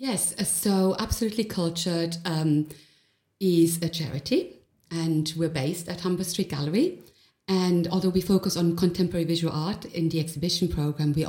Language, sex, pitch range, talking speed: English, female, 150-180 Hz, 150 wpm